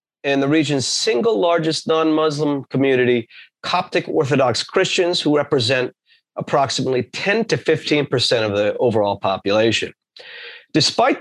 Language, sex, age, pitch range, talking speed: English, male, 30-49, 125-160 Hz, 110 wpm